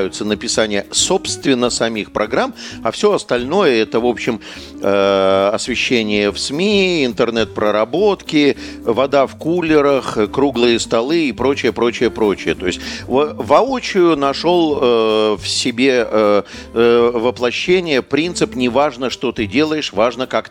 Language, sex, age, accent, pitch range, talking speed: Russian, male, 50-69, native, 105-130 Hz, 110 wpm